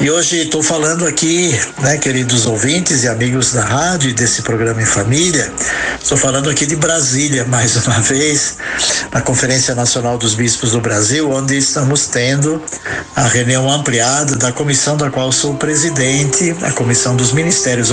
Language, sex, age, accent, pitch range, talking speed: Portuguese, male, 60-79, Brazilian, 120-140 Hz, 160 wpm